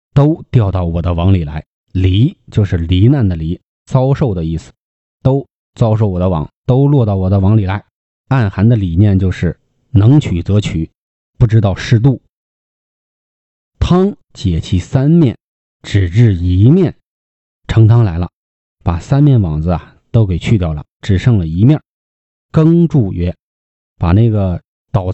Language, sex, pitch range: Chinese, male, 90-125 Hz